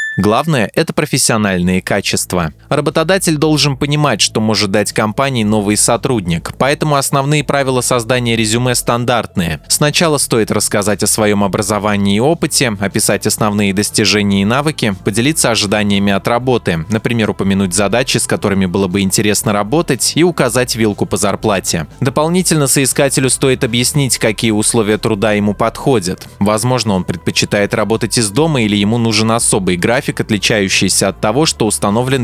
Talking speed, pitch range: 140 wpm, 105-140 Hz